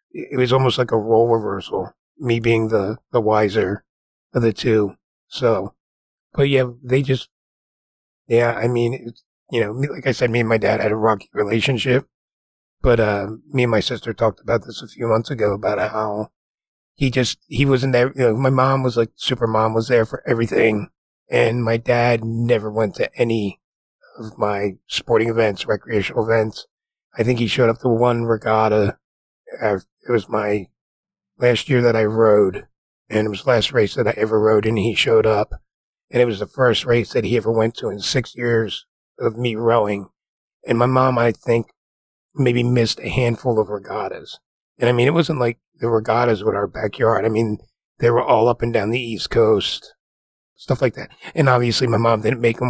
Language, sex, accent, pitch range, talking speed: English, male, American, 110-125 Hz, 195 wpm